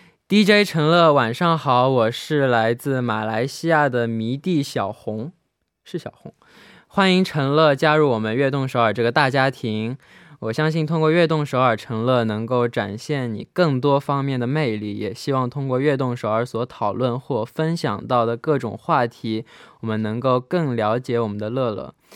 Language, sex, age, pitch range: Korean, male, 20-39, 120-155 Hz